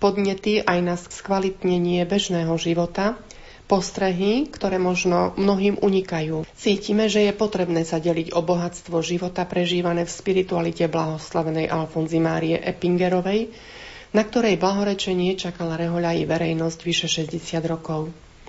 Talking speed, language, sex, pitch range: 115 wpm, Slovak, female, 170-195 Hz